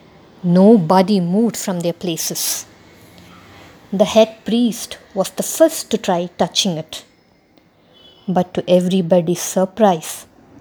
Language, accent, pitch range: English, Indian, 180-225 Hz